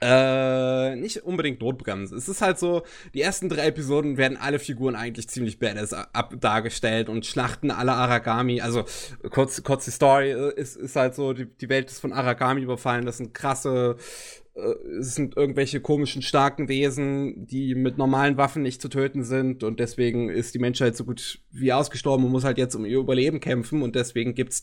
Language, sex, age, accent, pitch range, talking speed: German, male, 20-39, German, 120-145 Hz, 190 wpm